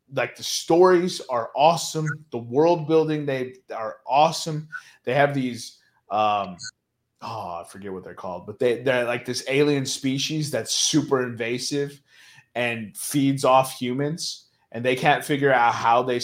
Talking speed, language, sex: 150 wpm, English, male